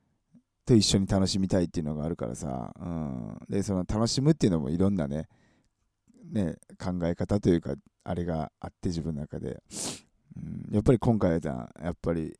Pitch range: 85-120 Hz